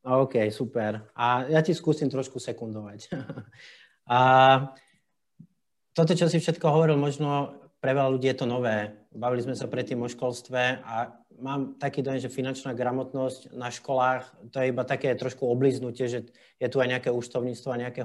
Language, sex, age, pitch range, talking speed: Slovak, male, 30-49, 120-140 Hz, 165 wpm